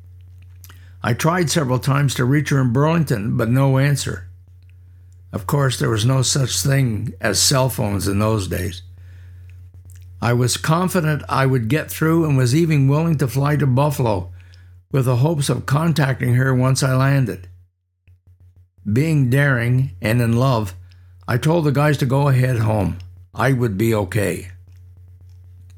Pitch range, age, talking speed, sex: 90-135 Hz, 60-79, 155 wpm, male